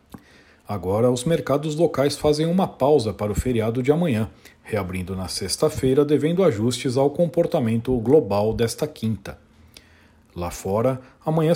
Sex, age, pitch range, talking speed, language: male, 50-69, 100-135 Hz, 130 wpm, Portuguese